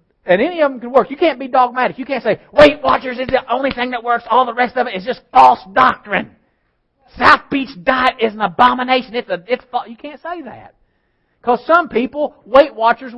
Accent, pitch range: American, 200-270 Hz